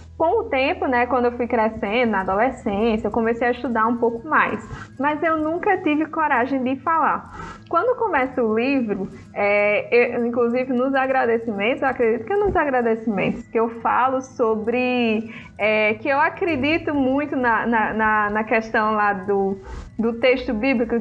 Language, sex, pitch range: Portuguese, female, 230-275 Hz